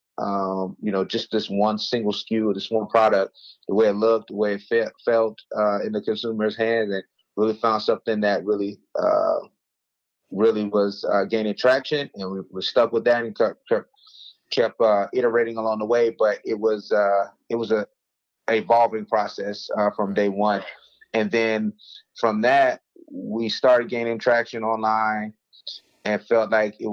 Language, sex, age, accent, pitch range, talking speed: English, male, 30-49, American, 100-115 Hz, 170 wpm